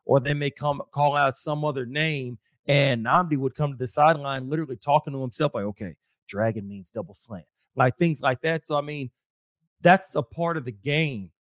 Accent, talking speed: American, 205 wpm